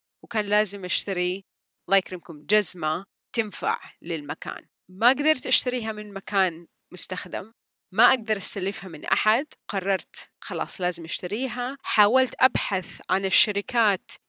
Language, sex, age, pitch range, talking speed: Arabic, female, 30-49, 190-245 Hz, 110 wpm